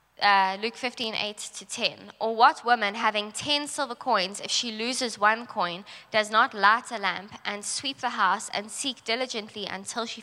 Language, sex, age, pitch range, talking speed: English, female, 20-39, 195-235 Hz, 190 wpm